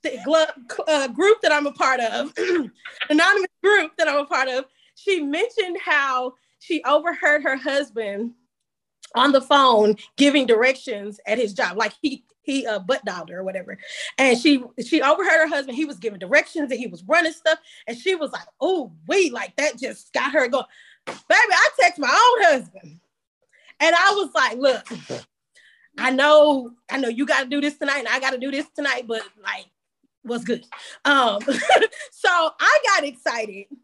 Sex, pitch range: female, 255-335 Hz